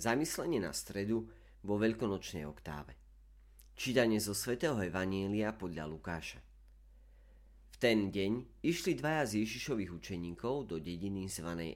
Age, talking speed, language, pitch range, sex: 40-59, 115 wpm, Slovak, 75-110 Hz, male